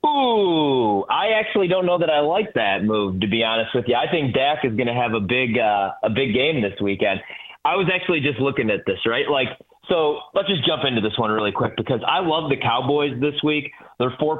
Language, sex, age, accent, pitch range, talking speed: English, male, 30-49, American, 120-150 Hz, 240 wpm